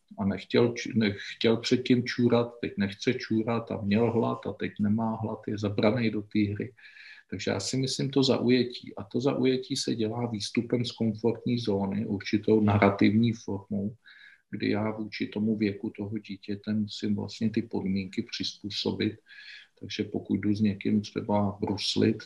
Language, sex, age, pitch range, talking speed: Czech, male, 50-69, 100-110 Hz, 155 wpm